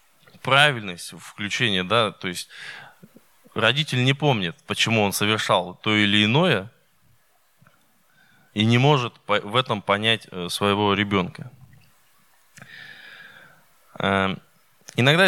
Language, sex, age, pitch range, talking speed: Russian, male, 20-39, 115-145 Hz, 90 wpm